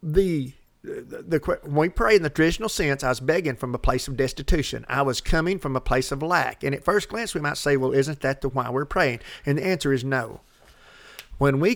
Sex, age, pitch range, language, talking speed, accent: male, 50-69, 135-195 Hz, English, 240 wpm, American